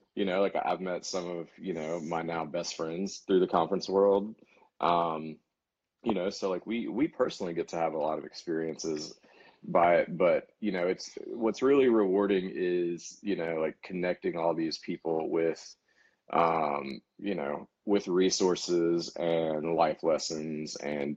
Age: 30-49